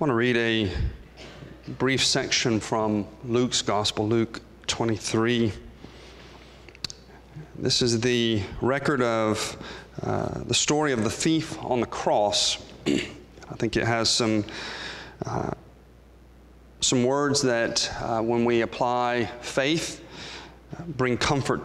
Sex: male